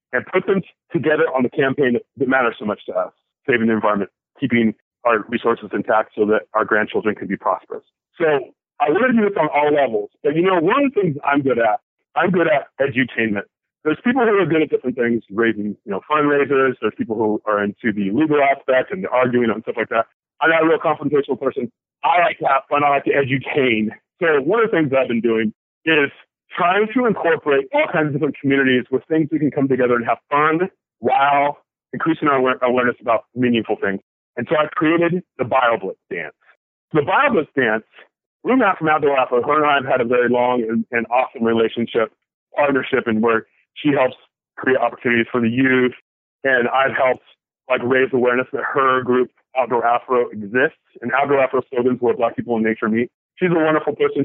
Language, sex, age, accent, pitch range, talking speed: English, male, 40-59, American, 115-150 Hz, 210 wpm